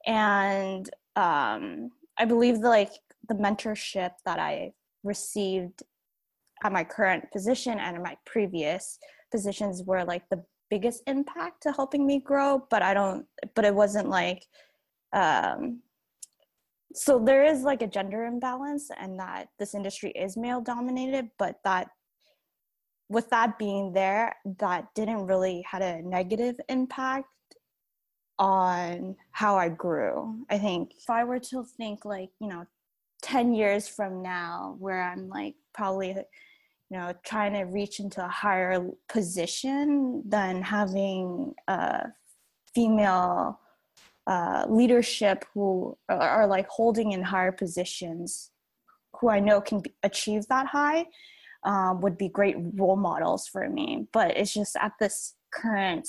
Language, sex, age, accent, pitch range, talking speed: English, female, 10-29, American, 190-255 Hz, 140 wpm